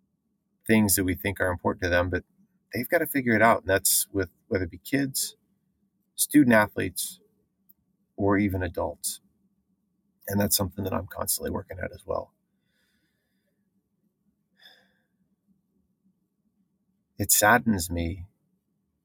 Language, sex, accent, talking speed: English, male, American, 125 wpm